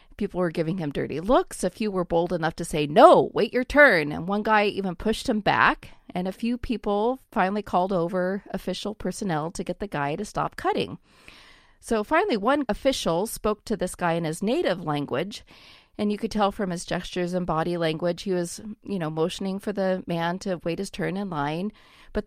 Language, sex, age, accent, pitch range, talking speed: English, female, 40-59, American, 170-215 Hz, 210 wpm